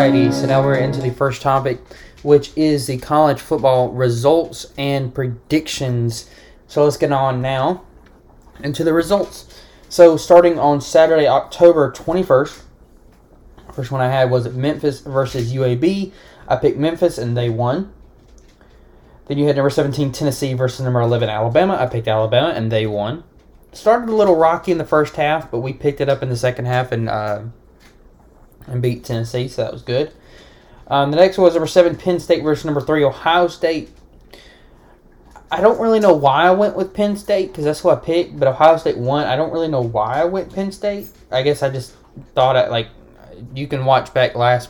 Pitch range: 115-155 Hz